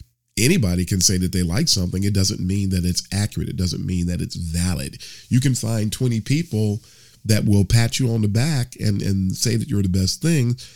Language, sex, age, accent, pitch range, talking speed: English, male, 40-59, American, 95-125 Hz, 220 wpm